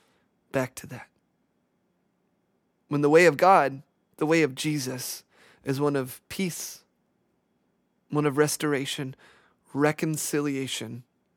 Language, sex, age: English, male, 30-49